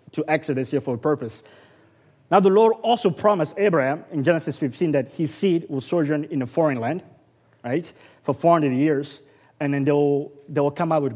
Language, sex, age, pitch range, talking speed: English, male, 30-49, 135-160 Hz, 200 wpm